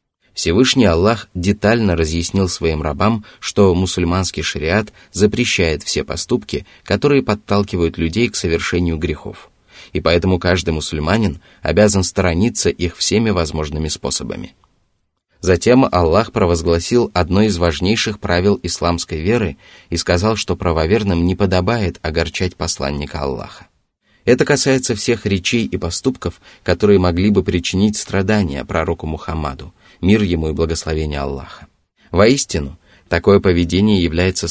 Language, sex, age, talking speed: Russian, male, 20-39, 120 wpm